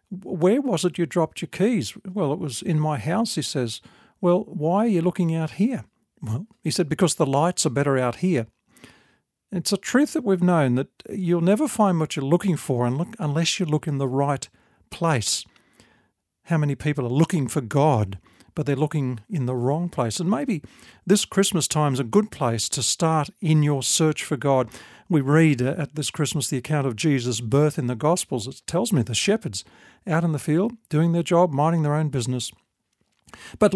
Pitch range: 130-175 Hz